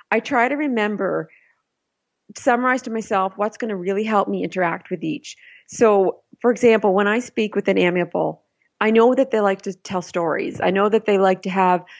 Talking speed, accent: 200 wpm, American